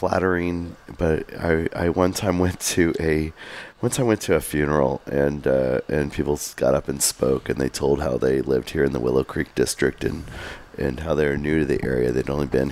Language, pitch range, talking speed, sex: English, 70-75 Hz, 220 wpm, male